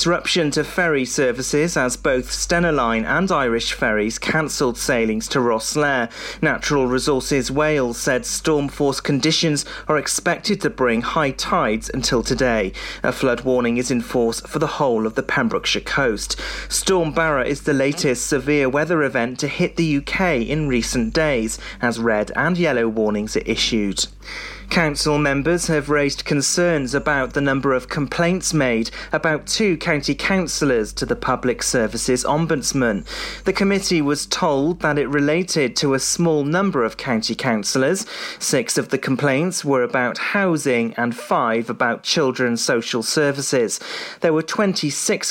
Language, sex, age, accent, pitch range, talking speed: English, male, 30-49, British, 125-160 Hz, 150 wpm